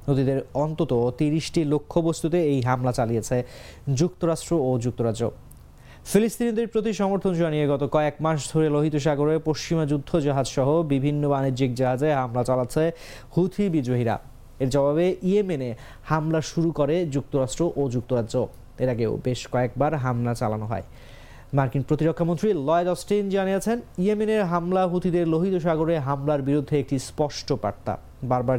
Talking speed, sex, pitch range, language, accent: 105 wpm, male, 130-170 Hz, English, Indian